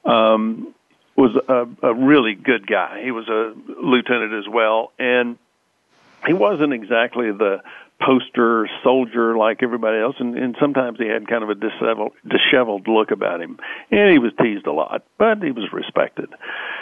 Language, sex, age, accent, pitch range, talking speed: English, male, 60-79, American, 115-140 Hz, 165 wpm